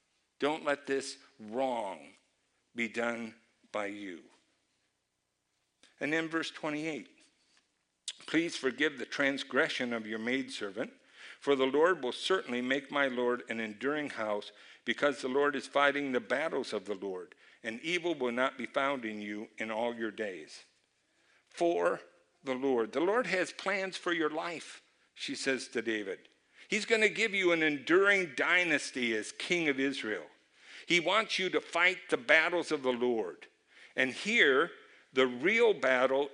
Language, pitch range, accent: English, 125-180 Hz, American